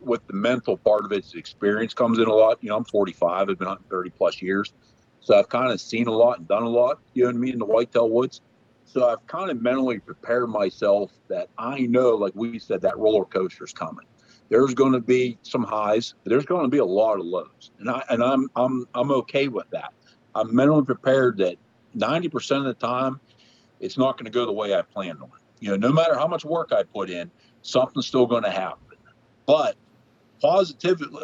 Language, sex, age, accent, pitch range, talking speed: English, male, 50-69, American, 115-140 Hz, 230 wpm